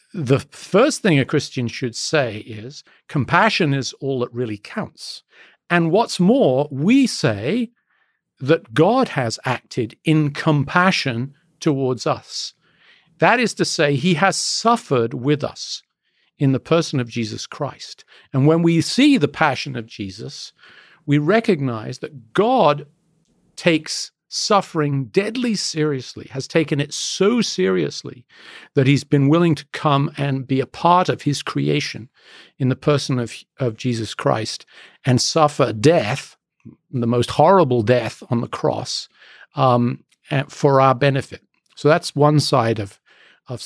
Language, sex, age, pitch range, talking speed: English, male, 50-69, 130-175 Hz, 145 wpm